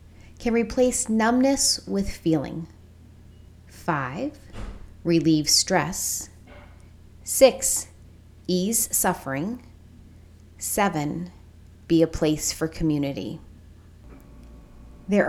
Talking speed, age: 70 wpm, 30-49